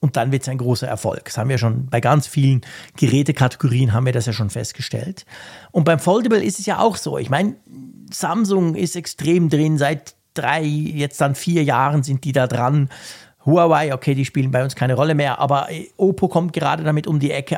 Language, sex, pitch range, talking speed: German, male, 130-175 Hz, 210 wpm